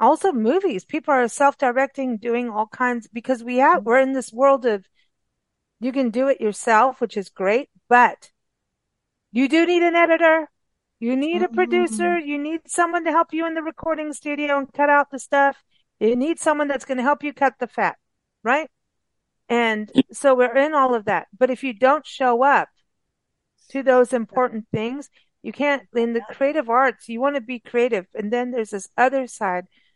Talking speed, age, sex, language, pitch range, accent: 185 wpm, 40-59, female, English, 210-275 Hz, American